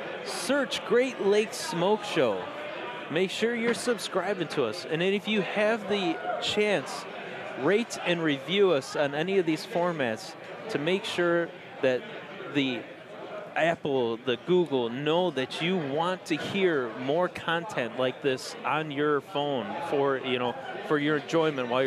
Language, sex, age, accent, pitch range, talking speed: English, male, 30-49, American, 140-195 Hz, 150 wpm